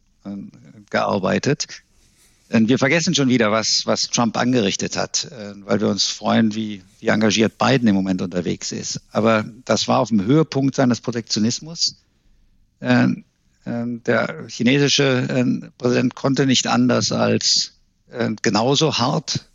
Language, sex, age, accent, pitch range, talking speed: German, male, 50-69, German, 110-130 Hz, 120 wpm